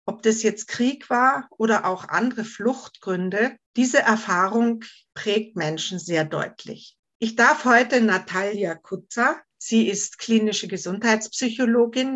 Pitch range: 180-230 Hz